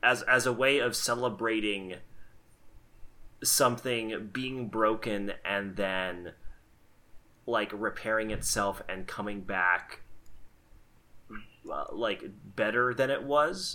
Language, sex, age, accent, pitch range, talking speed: English, male, 30-49, American, 100-115 Hz, 95 wpm